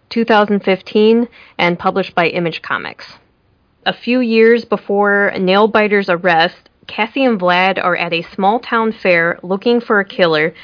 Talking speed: 140 wpm